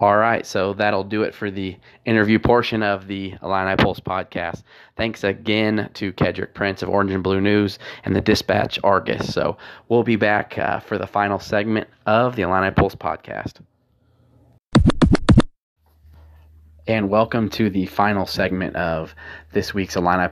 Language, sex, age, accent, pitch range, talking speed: English, male, 20-39, American, 90-105 Hz, 155 wpm